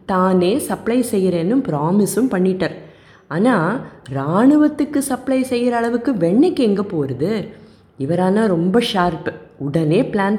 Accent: native